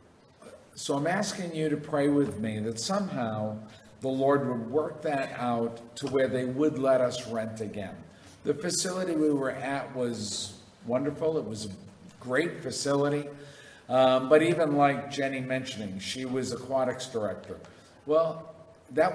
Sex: male